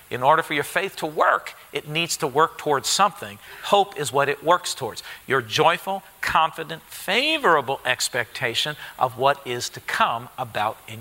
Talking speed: 170 wpm